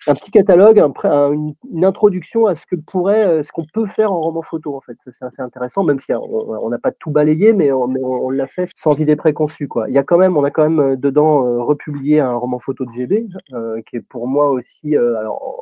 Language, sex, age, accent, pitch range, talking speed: French, male, 30-49, French, 130-180 Hz, 240 wpm